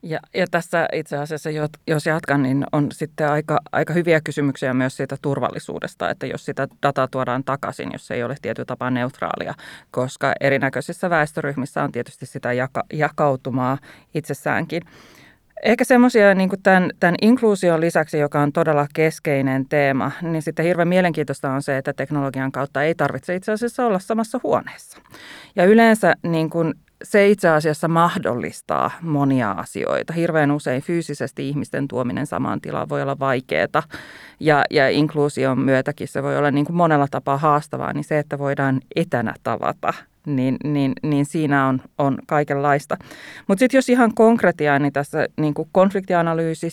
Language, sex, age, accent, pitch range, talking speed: Finnish, female, 30-49, native, 140-170 Hz, 155 wpm